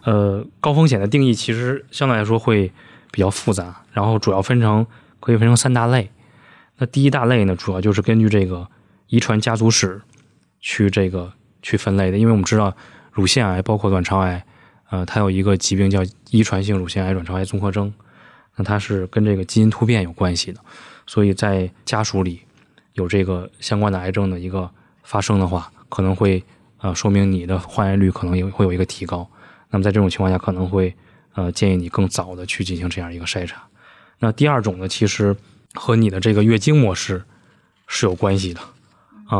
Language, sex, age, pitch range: Chinese, male, 20-39, 95-110 Hz